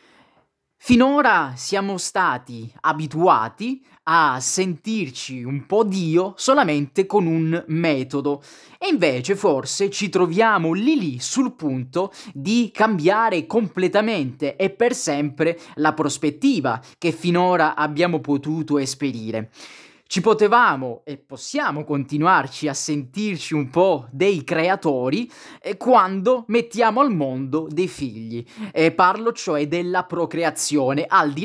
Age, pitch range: 20-39, 145-195 Hz